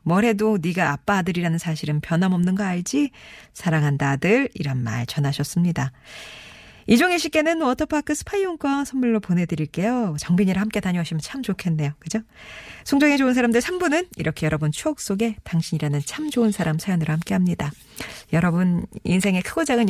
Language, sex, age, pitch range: Korean, female, 40-59, 160-225 Hz